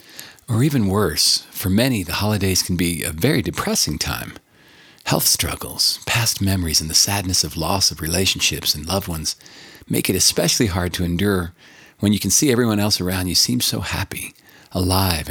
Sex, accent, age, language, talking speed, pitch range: male, American, 40-59, English, 175 wpm, 90-120 Hz